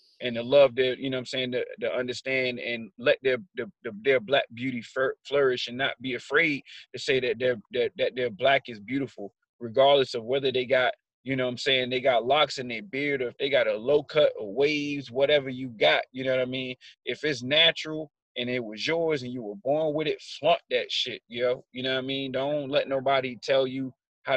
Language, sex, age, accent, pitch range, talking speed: English, male, 30-49, American, 125-140 Hz, 230 wpm